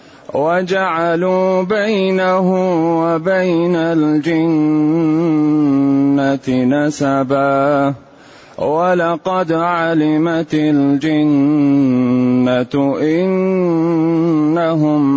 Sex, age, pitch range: male, 30-49, 165-200 Hz